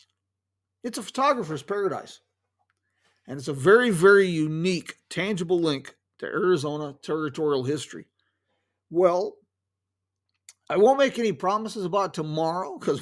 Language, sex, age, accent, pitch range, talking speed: English, male, 50-69, American, 125-185 Hz, 115 wpm